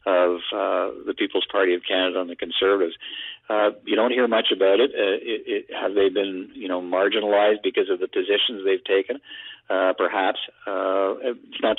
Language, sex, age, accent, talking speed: English, male, 50-69, American, 190 wpm